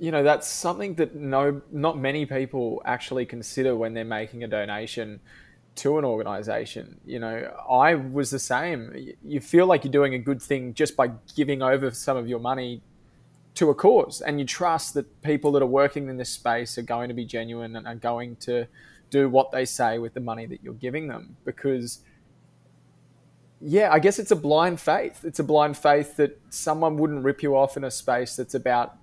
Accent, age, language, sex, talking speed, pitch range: Australian, 20-39, English, male, 205 wpm, 120-145 Hz